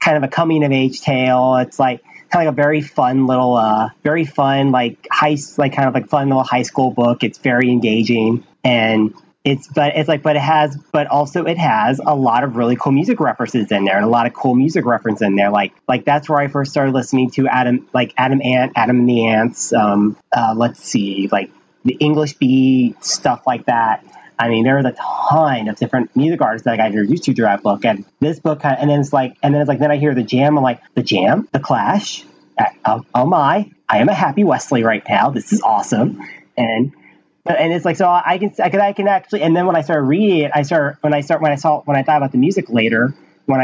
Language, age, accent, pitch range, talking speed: English, 30-49, American, 120-150 Hz, 245 wpm